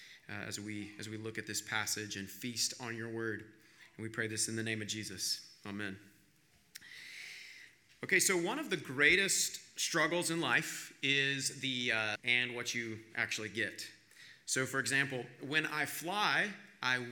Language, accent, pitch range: English, American, 110-145 Hz